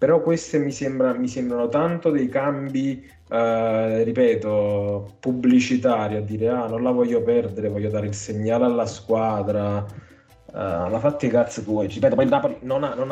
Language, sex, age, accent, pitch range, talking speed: Italian, male, 20-39, native, 105-130 Hz, 175 wpm